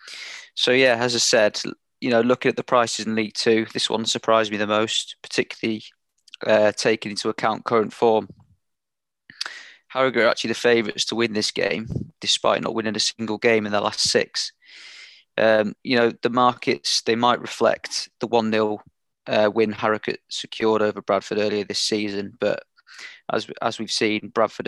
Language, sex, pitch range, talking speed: English, male, 105-125 Hz, 175 wpm